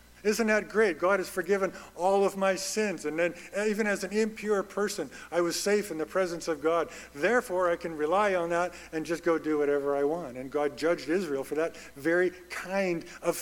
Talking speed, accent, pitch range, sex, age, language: 210 wpm, American, 150-200 Hz, male, 50-69, English